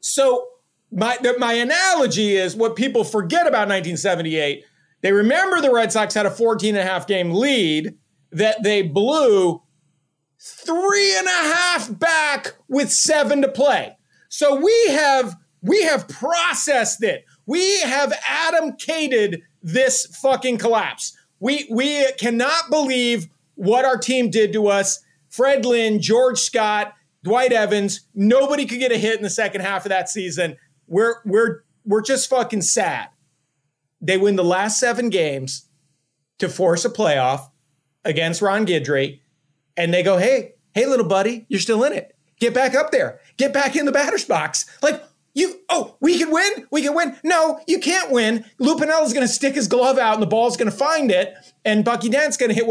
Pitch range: 195-280 Hz